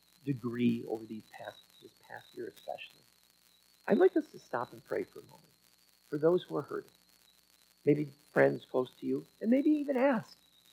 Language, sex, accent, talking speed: English, male, American, 180 wpm